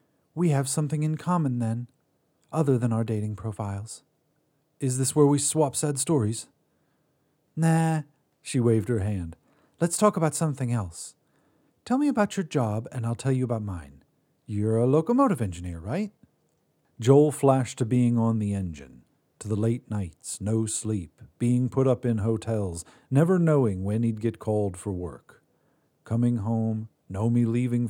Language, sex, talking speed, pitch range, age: English, male, 160 wpm, 105-140 Hz, 40-59